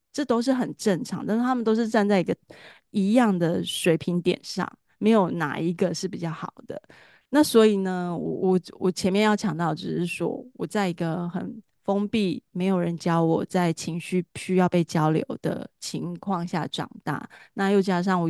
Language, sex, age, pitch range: Chinese, female, 20-39, 175-210 Hz